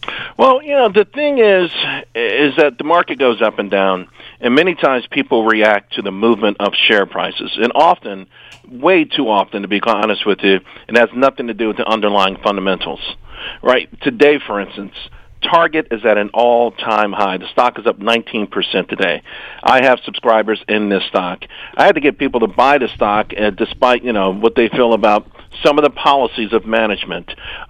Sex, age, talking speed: male, 50-69, 190 wpm